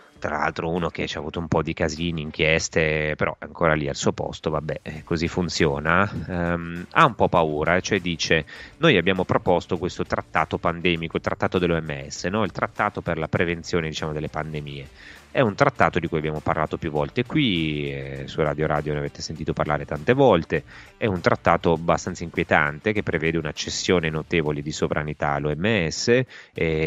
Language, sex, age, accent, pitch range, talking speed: Italian, male, 30-49, native, 75-95 Hz, 180 wpm